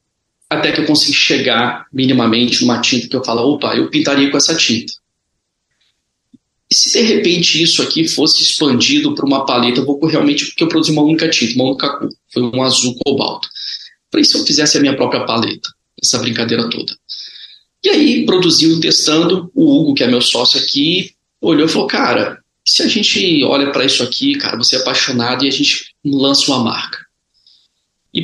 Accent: Brazilian